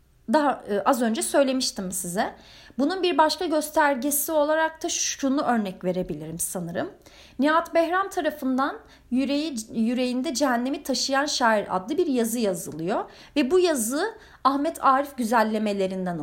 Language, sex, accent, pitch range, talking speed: Turkish, female, native, 210-310 Hz, 120 wpm